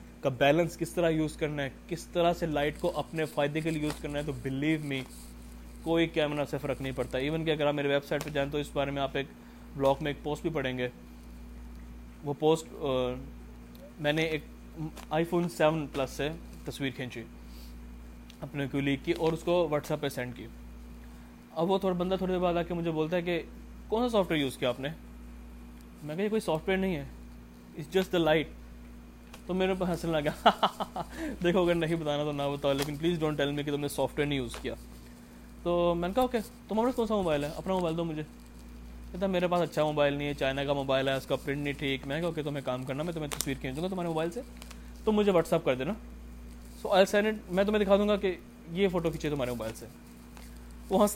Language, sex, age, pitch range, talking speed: Urdu, male, 20-39, 125-170 Hz, 230 wpm